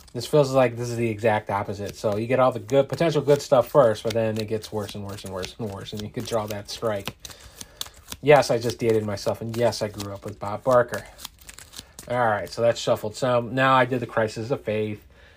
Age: 30-49